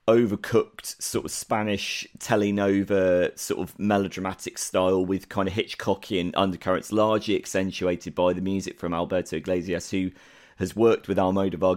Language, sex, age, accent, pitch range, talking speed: English, male, 30-49, British, 90-105 Hz, 140 wpm